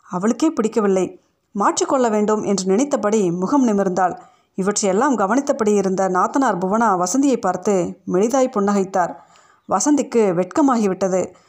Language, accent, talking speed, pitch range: Tamil, native, 100 wpm, 195-260 Hz